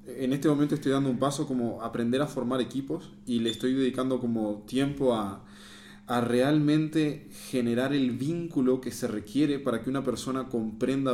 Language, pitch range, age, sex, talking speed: English, 115-135 Hz, 20-39, male, 170 wpm